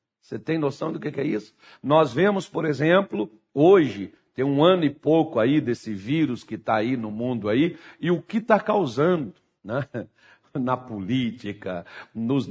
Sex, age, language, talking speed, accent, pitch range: male, 60-79, Portuguese, 165 wpm, Brazilian, 120-175 Hz